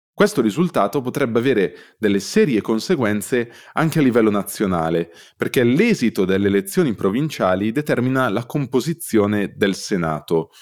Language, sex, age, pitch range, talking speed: Italian, male, 20-39, 100-145 Hz, 120 wpm